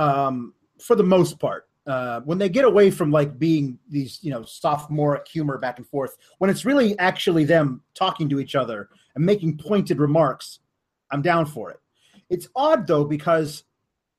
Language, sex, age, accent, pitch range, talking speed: English, male, 30-49, American, 150-195 Hz, 180 wpm